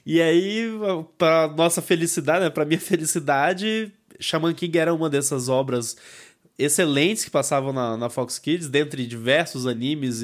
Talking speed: 145 wpm